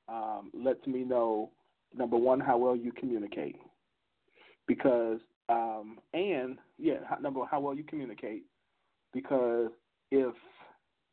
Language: English